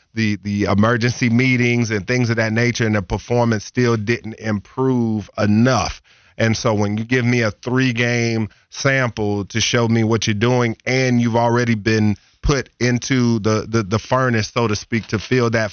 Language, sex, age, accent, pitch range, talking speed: English, male, 30-49, American, 105-125 Hz, 185 wpm